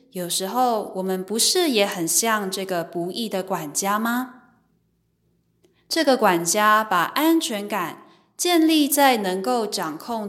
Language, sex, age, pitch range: Chinese, female, 20-39, 185-270 Hz